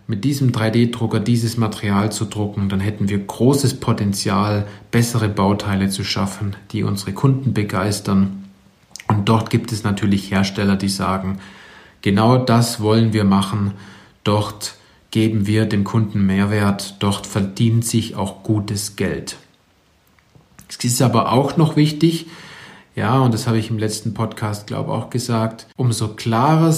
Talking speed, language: 145 wpm, German